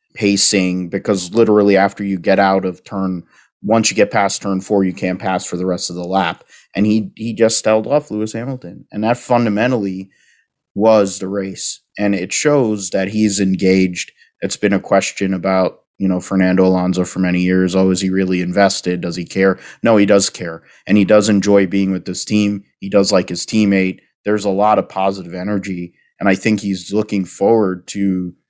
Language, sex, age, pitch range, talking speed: English, male, 30-49, 95-105 Hz, 200 wpm